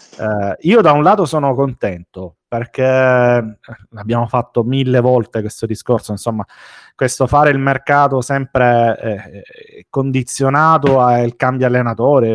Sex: male